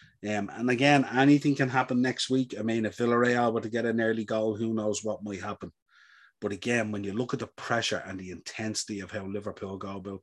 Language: English